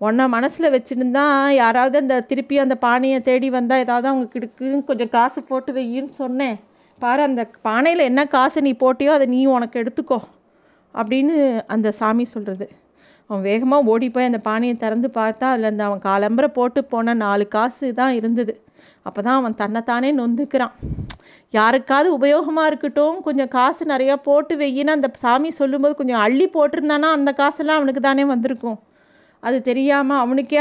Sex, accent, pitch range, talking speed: female, native, 230-280 Hz, 155 wpm